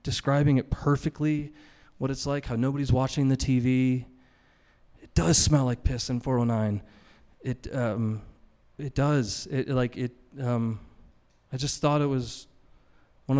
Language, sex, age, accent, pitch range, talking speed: English, male, 30-49, American, 115-135 Hz, 135 wpm